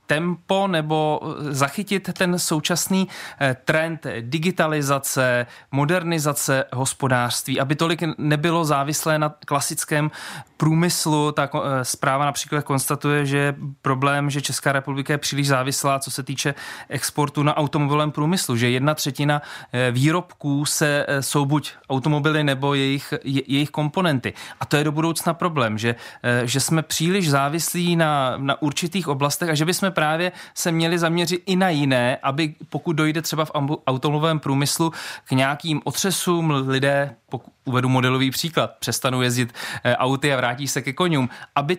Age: 30-49